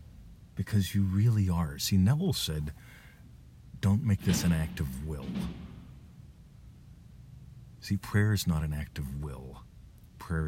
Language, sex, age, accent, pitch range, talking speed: English, male, 50-69, American, 65-95 Hz, 130 wpm